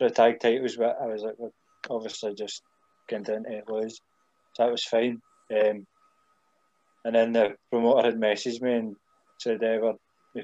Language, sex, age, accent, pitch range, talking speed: English, male, 20-39, British, 115-140 Hz, 170 wpm